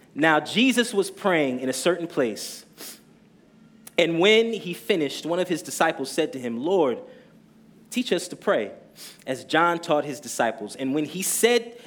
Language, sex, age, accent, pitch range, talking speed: English, male, 30-49, American, 130-200 Hz, 165 wpm